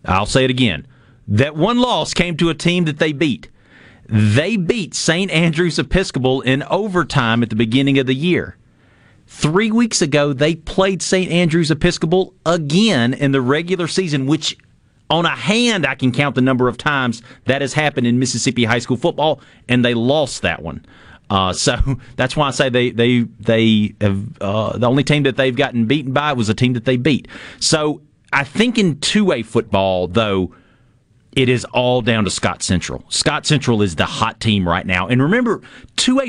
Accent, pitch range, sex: American, 115-155 Hz, male